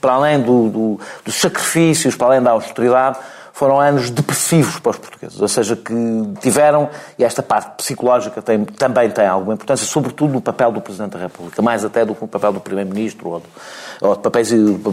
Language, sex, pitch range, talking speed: Portuguese, male, 115-150 Hz, 195 wpm